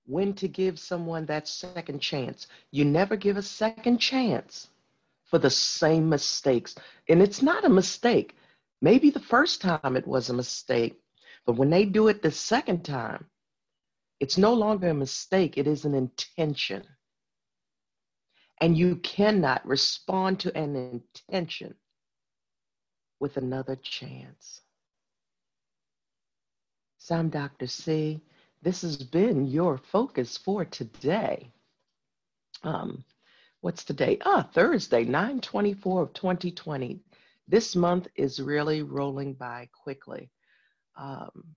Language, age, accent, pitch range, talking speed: English, 50-69, American, 135-185 Hz, 120 wpm